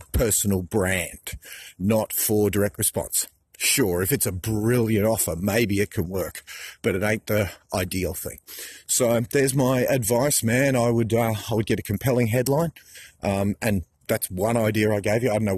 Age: 40-59